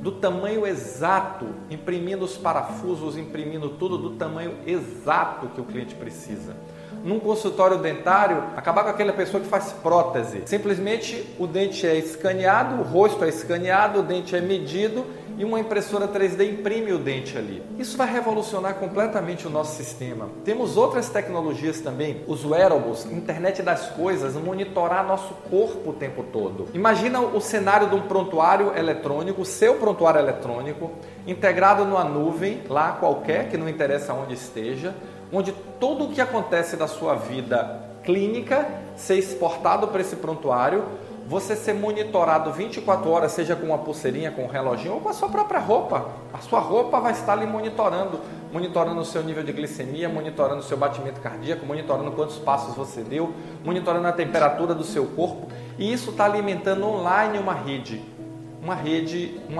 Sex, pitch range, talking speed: male, 155-205 Hz, 160 wpm